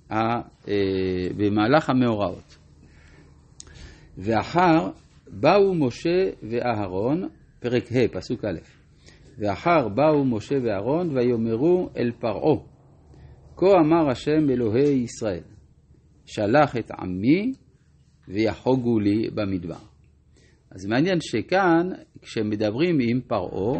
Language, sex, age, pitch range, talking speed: Hebrew, male, 50-69, 100-150 Hz, 85 wpm